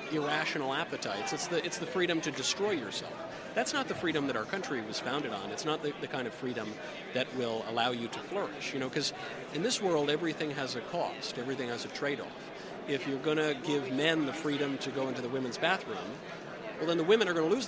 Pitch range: 135-170 Hz